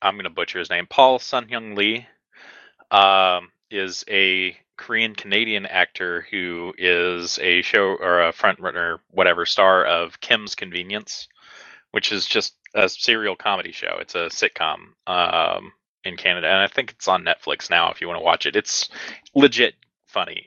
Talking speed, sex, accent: 165 wpm, male, American